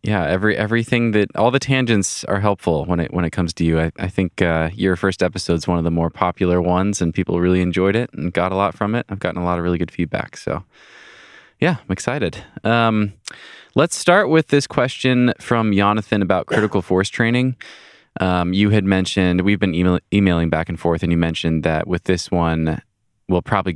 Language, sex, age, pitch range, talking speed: English, male, 20-39, 85-110 Hz, 215 wpm